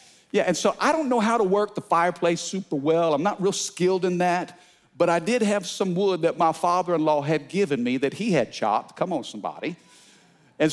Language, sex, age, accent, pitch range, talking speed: English, male, 50-69, American, 150-205 Hz, 220 wpm